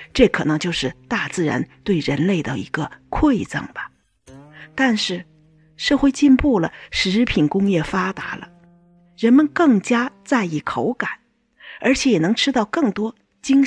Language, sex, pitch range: Chinese, female, 165-245 Hz